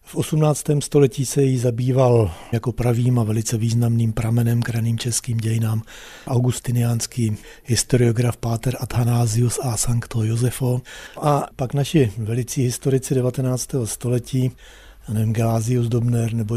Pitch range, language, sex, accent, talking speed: 115-130 Hz, Czech, male, native, 120 wpm